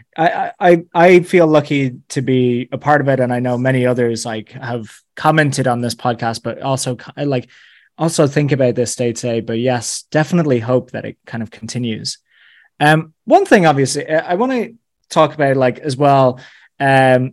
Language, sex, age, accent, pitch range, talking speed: English, male, 20-39, British, 125-160 Hz, 185 wpm